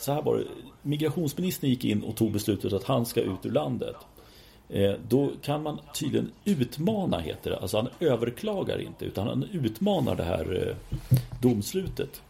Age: 40-59